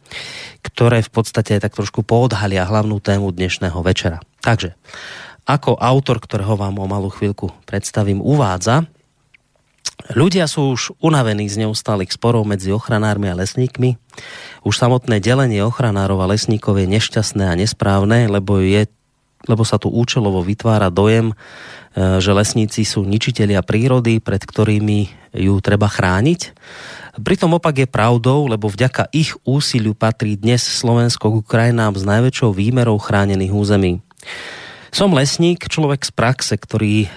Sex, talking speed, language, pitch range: male, 130 wpm, Slovak, 100-120 Hz